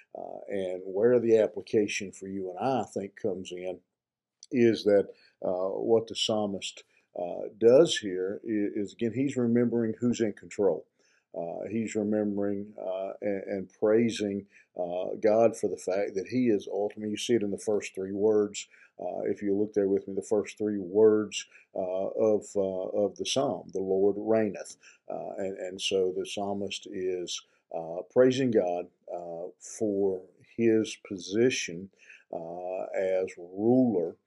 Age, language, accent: 50-69, English, American